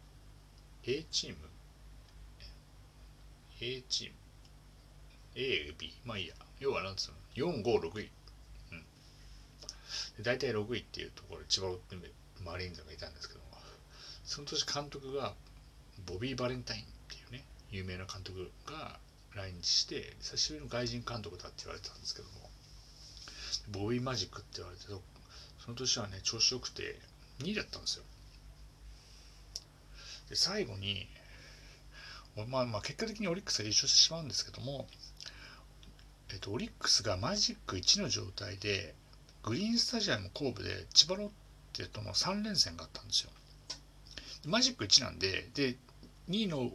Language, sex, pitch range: Japanese, male, 100-140 Hz